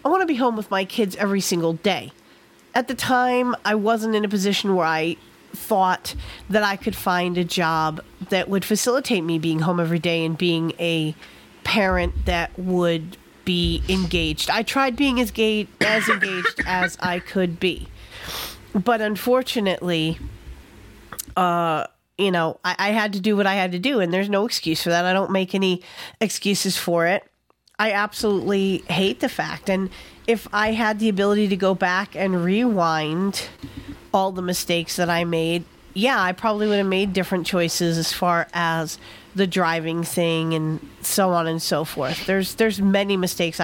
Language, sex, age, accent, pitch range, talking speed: English, female, 40-59, American, 170-210 Hz, 175 wpm